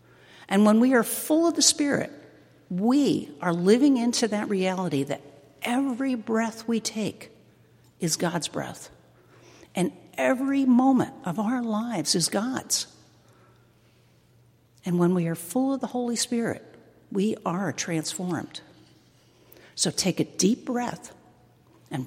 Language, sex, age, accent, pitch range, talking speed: English, female, 60-79, American, 140-215 Hz, 130 wpm